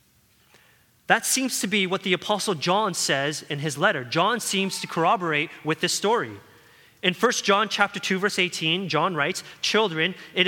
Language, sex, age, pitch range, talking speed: English, male, 30-49, 150-190 Hz, 170 wpm